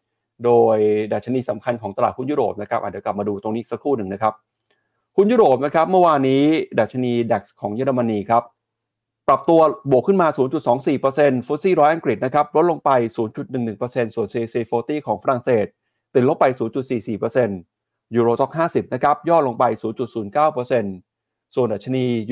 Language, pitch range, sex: Thai, 115-150 Hz, male